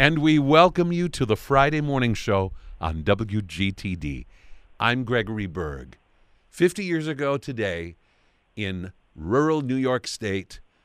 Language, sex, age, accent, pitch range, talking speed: English, male, 50-69, American, 90-125 Hz, 125 wpm